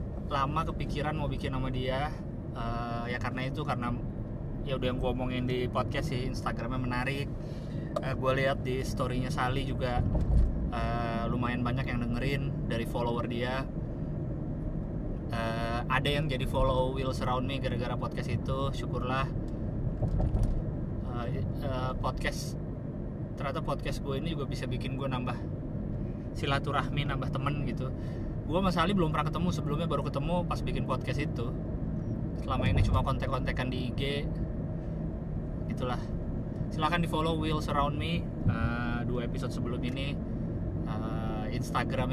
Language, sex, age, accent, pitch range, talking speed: Indonesian, male, 20-39, native, 120-140 Hz, 140 wpm